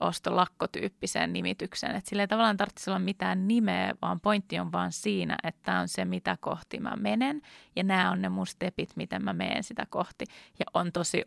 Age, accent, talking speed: 30-49, native, 190 wpm